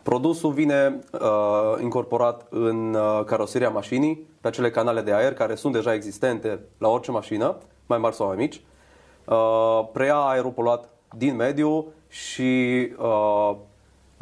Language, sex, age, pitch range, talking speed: Romanian, male, 30-49, 115-150 Hz, 140 wpm